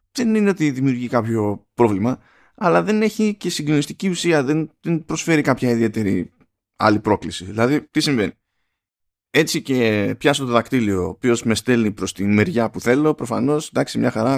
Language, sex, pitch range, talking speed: Greek, male, 110-150 Hz, 165 wpm